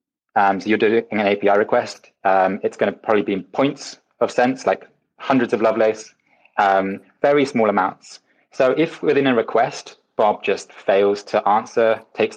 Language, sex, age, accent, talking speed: English, male, 20-39, British, 175 wpm